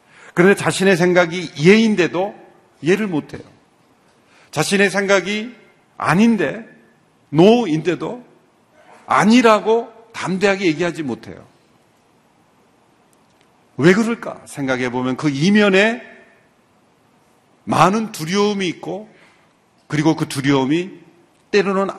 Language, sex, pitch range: Korean, male, 125-190 Hz